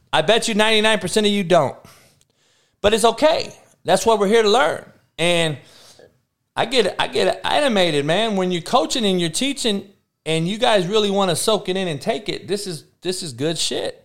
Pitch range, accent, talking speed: 145-215 Hz, American, 220 wpm